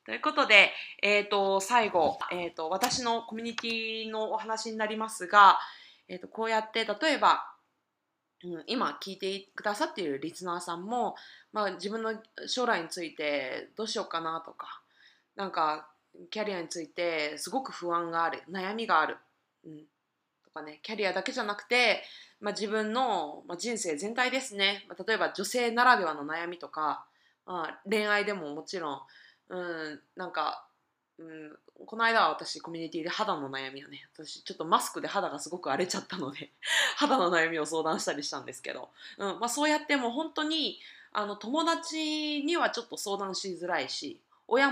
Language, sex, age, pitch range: Japanese, female, 20-39, 165-225 Hz